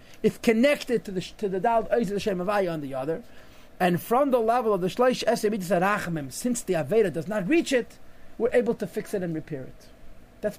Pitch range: 170-235 Hz